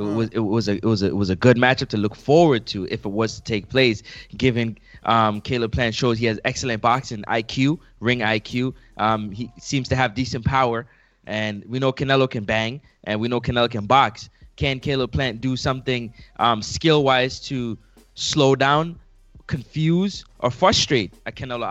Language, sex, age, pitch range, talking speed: English, male, 20-39, 110-130 Hz, 190 wpm